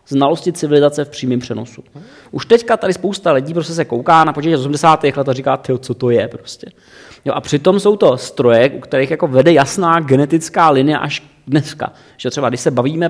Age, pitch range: 30-49, 135-175 Hz